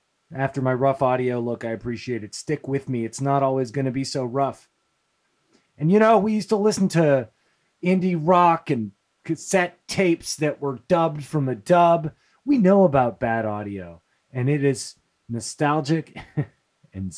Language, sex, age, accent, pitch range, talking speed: English, male, 30-49, American, 110-165 Hz, 170 wpm